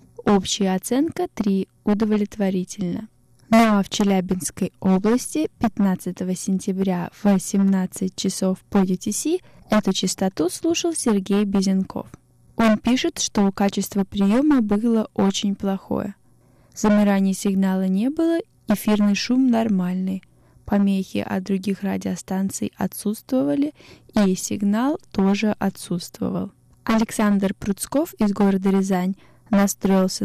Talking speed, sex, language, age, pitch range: 100 wpm, female, Russian, 10-29, 190-225 Hz